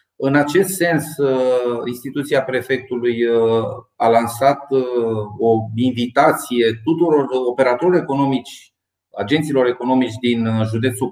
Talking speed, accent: 85 wpm, native